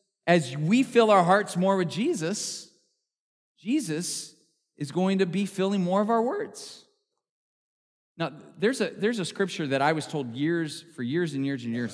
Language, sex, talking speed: English, male, 170 wpm